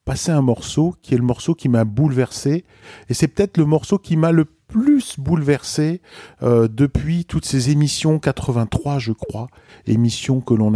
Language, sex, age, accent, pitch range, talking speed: French, male, 40-59, French, 115-150 Hz, 175 wpm